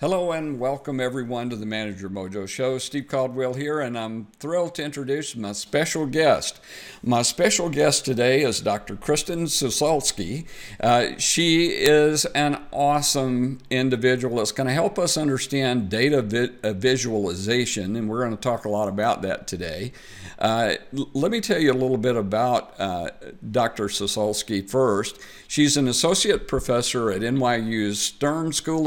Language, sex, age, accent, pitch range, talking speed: English, male, 50-69, American, 105-140 Hz, 155 wpm